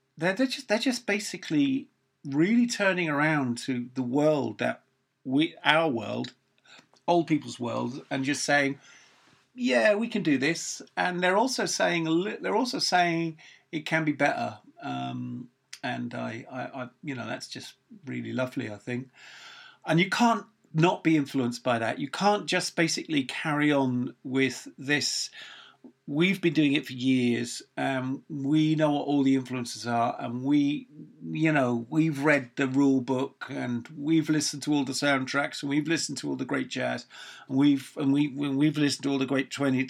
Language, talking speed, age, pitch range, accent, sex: English, 170 wpm, 40-59, 130-160 Hz, British, male